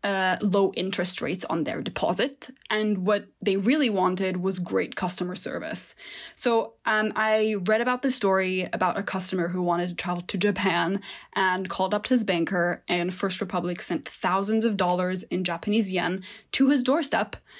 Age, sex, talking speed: 20-39, female, 170 wpm